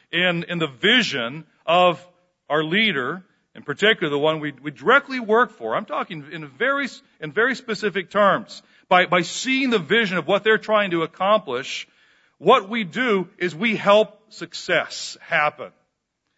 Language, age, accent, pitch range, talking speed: English, 50-69, American, 150-195 Hz, 160 wpm